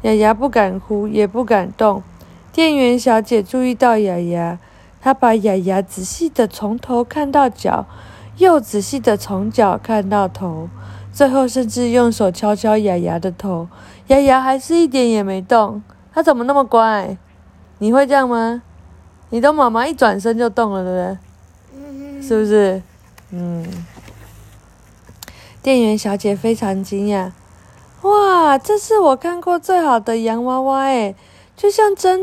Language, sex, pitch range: Chinese, female, 190-255 Hz